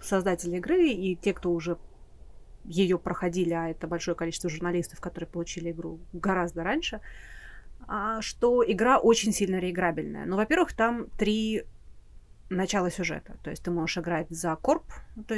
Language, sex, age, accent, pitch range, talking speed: Russian, female, 30-49, native, 170-220 Hz, 145 wpm